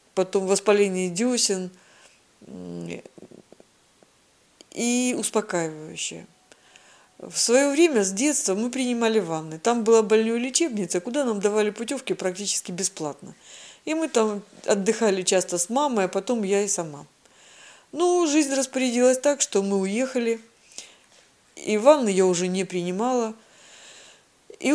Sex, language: female, Russian